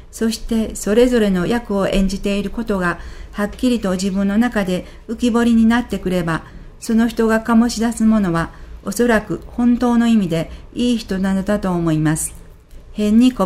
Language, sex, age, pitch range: Japanese, female, 50-69, 180-230 Hz